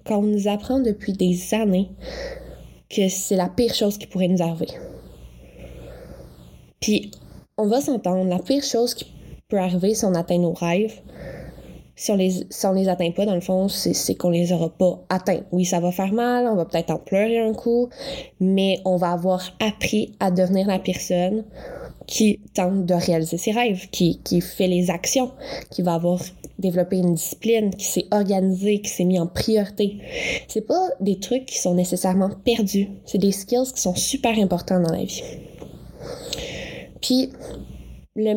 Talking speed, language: 175 wpm, French